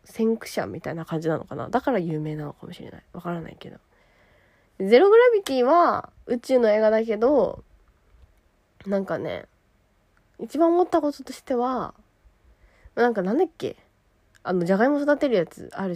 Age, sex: 20-39, female